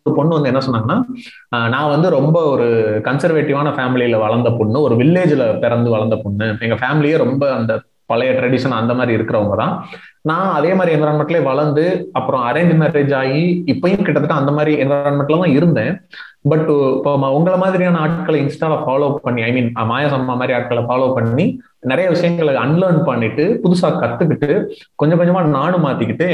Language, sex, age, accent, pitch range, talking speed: Tamil, male, 30-49, native, 125-170 Hz, 155 wpm